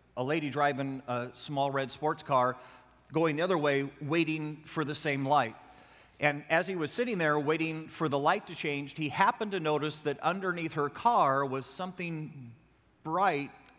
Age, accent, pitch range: 50-69, American, 135-170 Hz